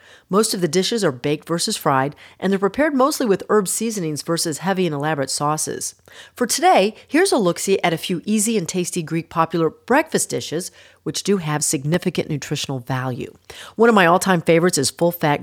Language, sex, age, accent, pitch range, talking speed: English, female, 40-59, American, 150-200 Hz, 185 wpm